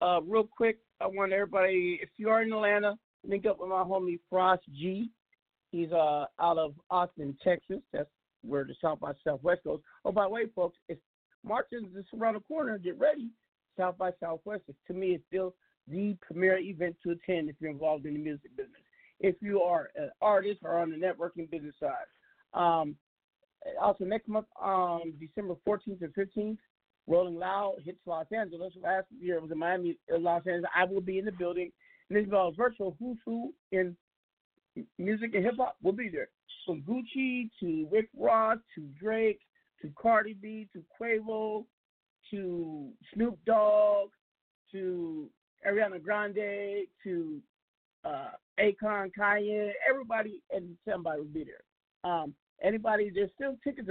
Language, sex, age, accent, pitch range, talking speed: English, male, 50-69, American, 175-220 Hz, 165 wpm